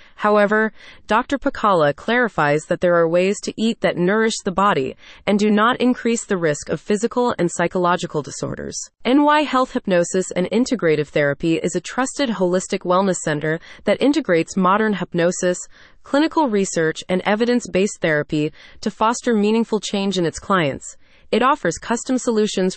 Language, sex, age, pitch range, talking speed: English, female, 30-49, 175-230 Hz, 150 wpm